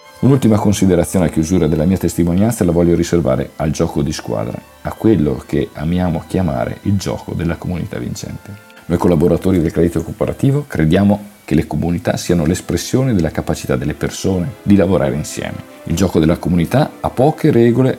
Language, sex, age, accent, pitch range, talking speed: Italian, male, 50-69, native, 85-110 Hz, 165 wpm